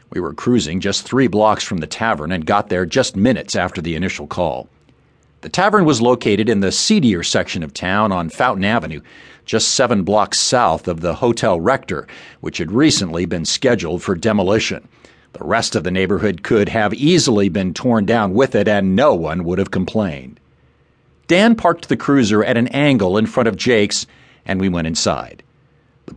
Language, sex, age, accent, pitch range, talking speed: English, male, 50-69, American, 90-120 Hz, 185 wpm